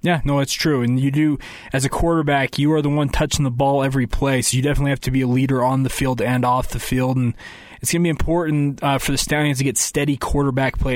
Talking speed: 270 wpm